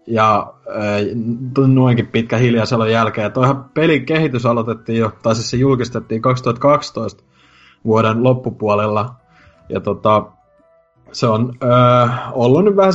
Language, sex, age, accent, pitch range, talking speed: Finnish, male, 30-49, native, 105-130 Hz, 115 wpm